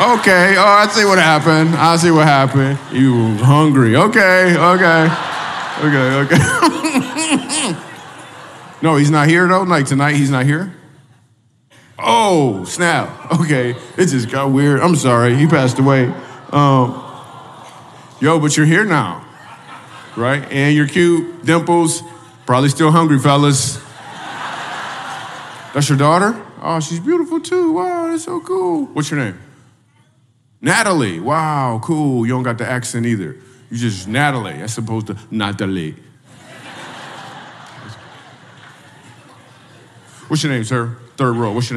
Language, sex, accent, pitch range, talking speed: English, male, American, 120-165 Hz, 130 wpm